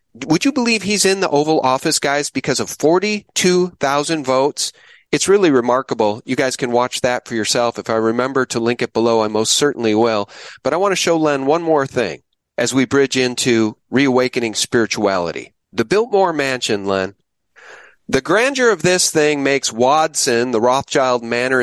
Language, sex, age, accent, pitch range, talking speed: English, male, 40-59, American, 125-175 Hz, 175 wpm